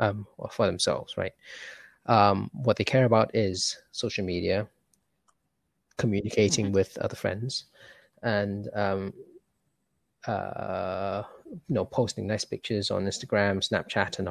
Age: 20-39